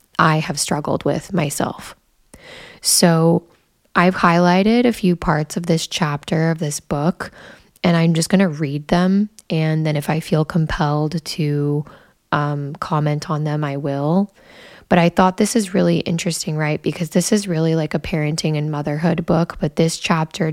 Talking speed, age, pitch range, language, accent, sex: 170 wpm, 10-29, 160-185 Hz, English, American, female